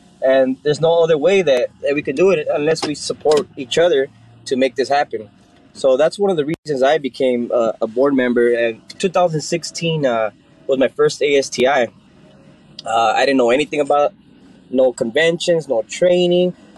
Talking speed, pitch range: 175 wpm, 135-185 Hz